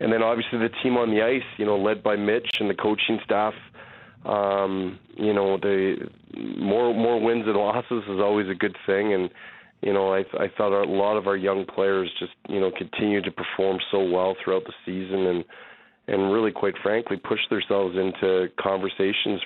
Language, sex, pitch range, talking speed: English, male, 95-105 Hz, 195 wpm